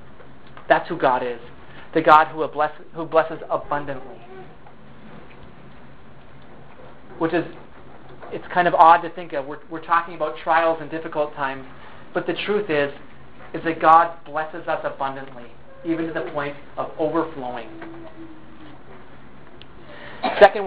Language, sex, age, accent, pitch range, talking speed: English, male, 30-49, American, 150-180 Hz, 130 wpm